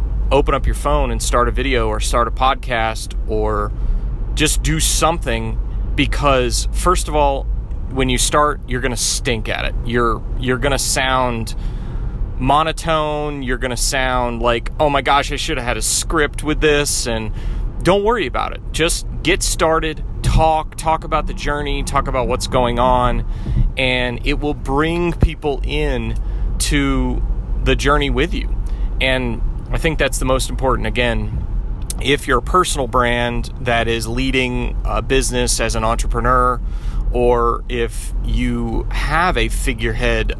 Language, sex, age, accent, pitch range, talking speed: English, male, 30-49, American, 115-135 Hz, 160 wpm